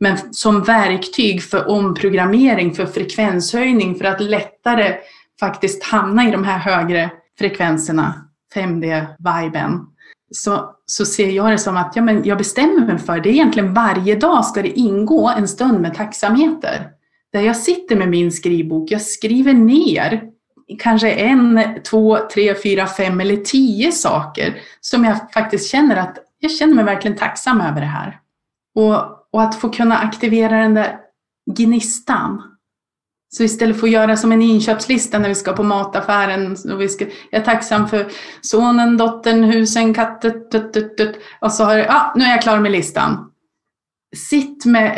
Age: 30-49